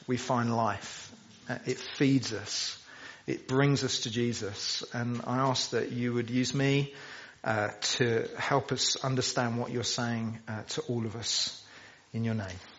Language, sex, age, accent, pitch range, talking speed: English, male, 40-59, British, 125-150 Hz, 170 wpm